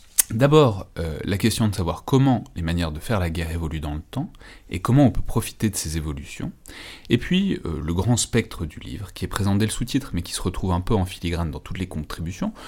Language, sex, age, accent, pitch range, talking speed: French, male, 30-49, French, 80-115 Hz, 235 wpm